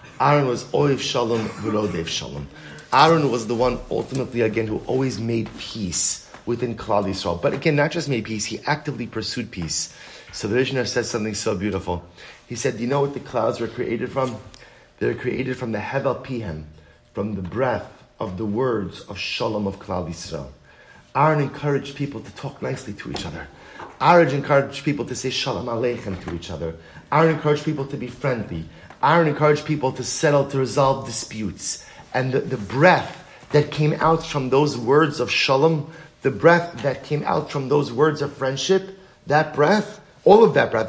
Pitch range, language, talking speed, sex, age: 110-145 Hz, English, 185 wpm, male, 30-49